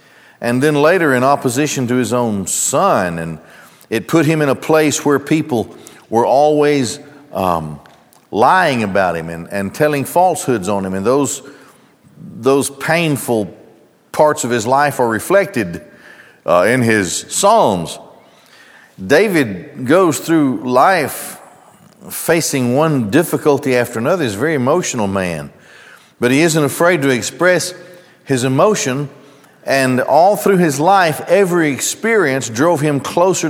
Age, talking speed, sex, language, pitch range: 50-69, 135 wpm, male, English, 120-160 Hz